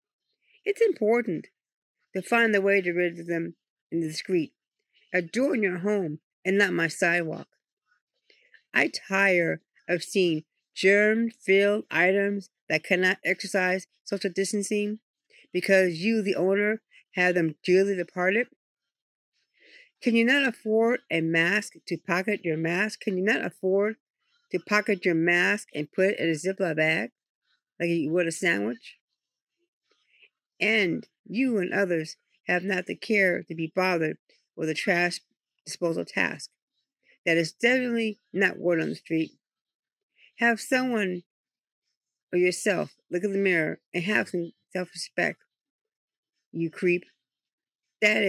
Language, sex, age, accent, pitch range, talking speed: English, female, 50-69, American, 170-210 Hz, 135 wpm